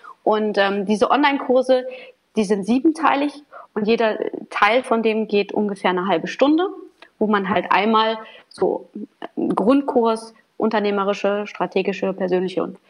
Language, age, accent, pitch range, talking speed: German, 30-49, German, 200-245 Hz, 130 wpm